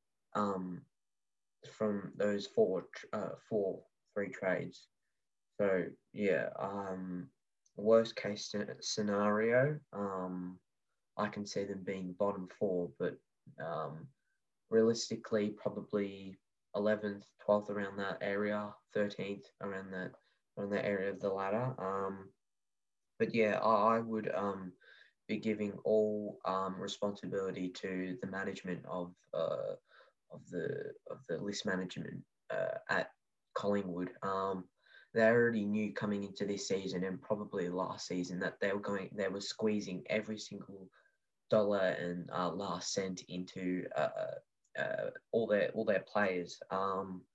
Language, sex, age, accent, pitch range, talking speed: English, male, 10-29, Australian, 95-105 Hz, 130 wpm